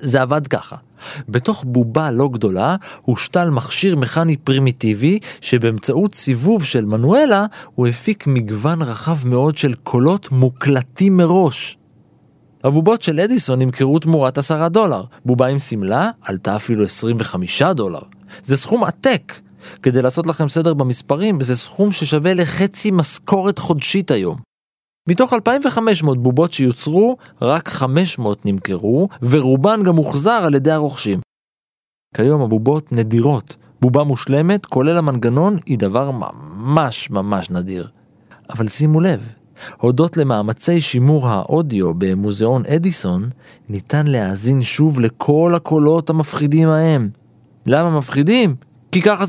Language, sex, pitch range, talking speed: Hebrew, male, 125-170 Hz, 120 wpm